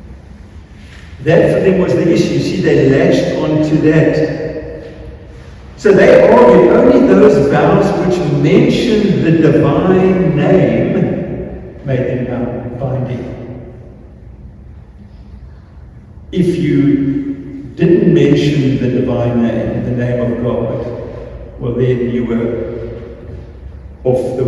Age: 50-69